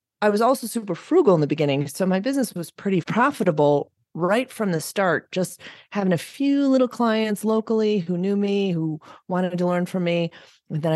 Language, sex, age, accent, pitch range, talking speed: English, female, 30-49, American, 155-210 Hz, 195 wpm